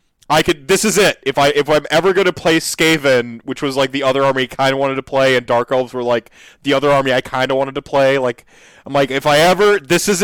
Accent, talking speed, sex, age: American, 280 wpm, male, 30-49